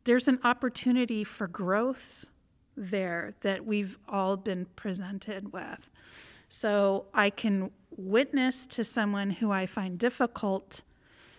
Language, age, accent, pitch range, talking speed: English, 40-59, American, 200-240 Hz, 115 wpm